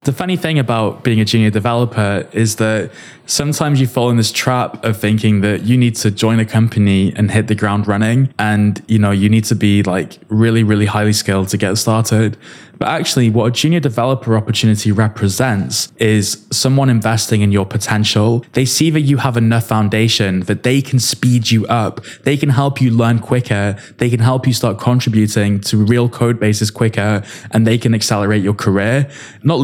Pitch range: 105-120 Hz